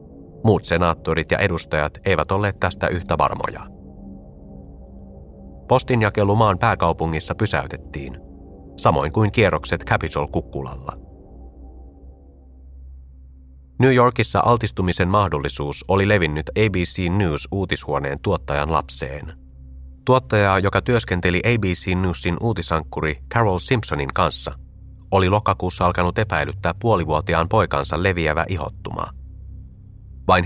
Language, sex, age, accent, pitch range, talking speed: Finnish, male, 30-49, native, 75-100 Hz, 90 wpm